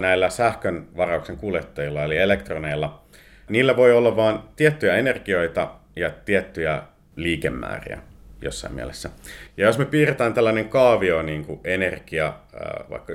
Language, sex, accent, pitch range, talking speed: Finnish, male, native, 75-110 Hz, 125 wpm